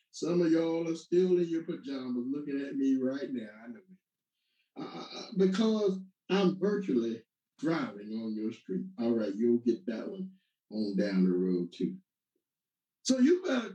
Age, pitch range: 60-79, 160-215 Hz